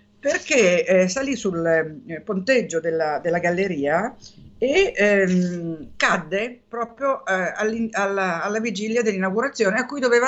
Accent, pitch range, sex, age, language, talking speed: native, 175-225 Hz, female, 50-69, Italian, 125 wpm